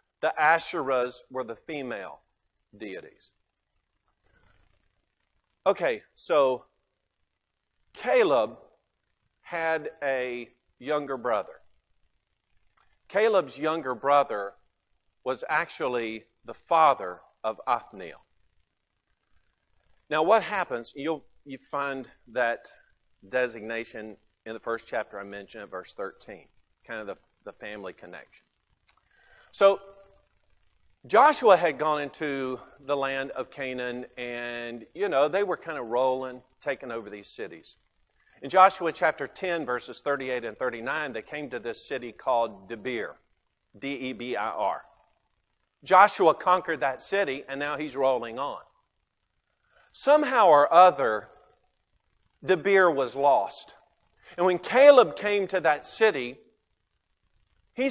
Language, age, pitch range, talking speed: English, 50-69, 115-170 Hz, 115 wpm